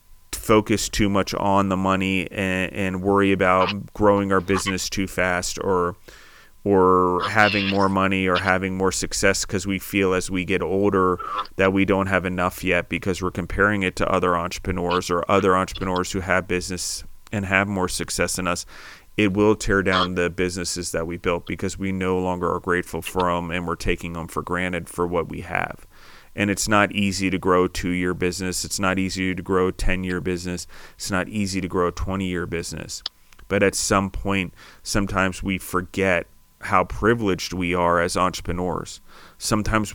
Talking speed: 185 wpm